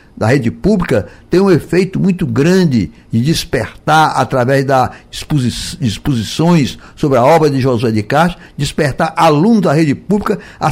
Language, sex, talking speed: Portuguese, male, 145 wpm